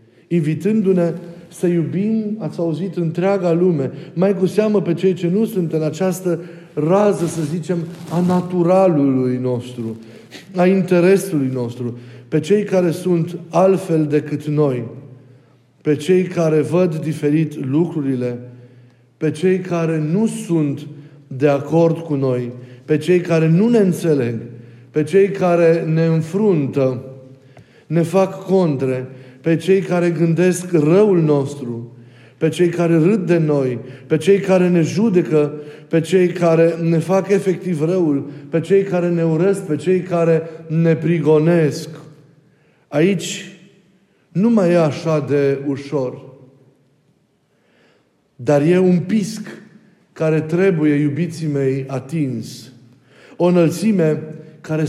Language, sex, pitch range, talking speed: Romanian, male, 145-180 Hz, 125 wpm